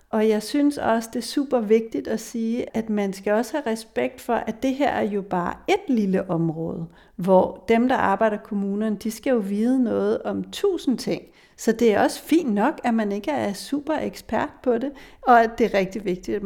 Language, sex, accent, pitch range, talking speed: Danish, female, native, 195-245 Hz, 220 wpm